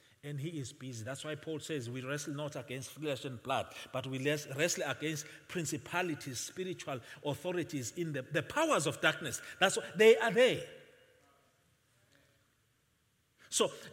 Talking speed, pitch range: 150 wpm, 130-200 Hz